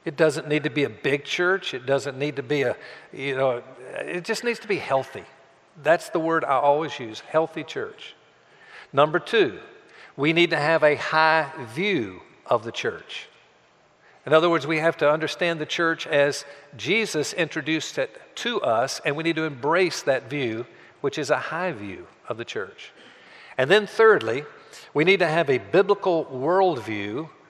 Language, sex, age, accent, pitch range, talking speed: English, male, 50-69, American, 145-185 Hz, 180 wpm